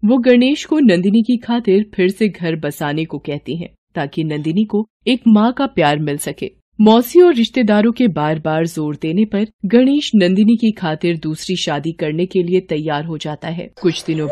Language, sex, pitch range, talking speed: Hindi, female, 160-230 Hz, 195 wpm